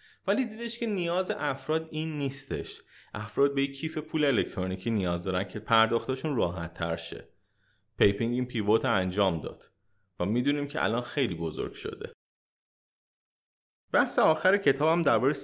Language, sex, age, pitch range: Persian, male, 30-49, 100-160 Hz